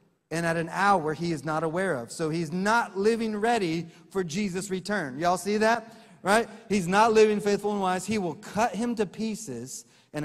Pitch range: 160-225 Hz